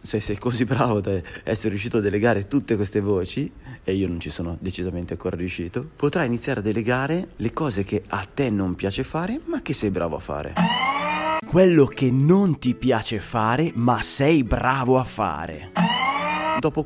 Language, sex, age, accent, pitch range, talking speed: Italian, male, 30-49, native, 95-145 Hz, 180 wpm